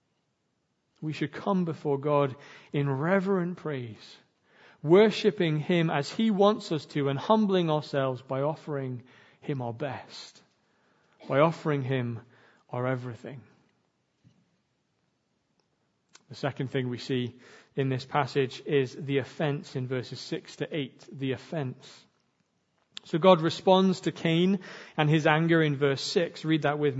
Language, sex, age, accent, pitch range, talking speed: English, male, 40-59, British, 140-185 Hz, 135 wpm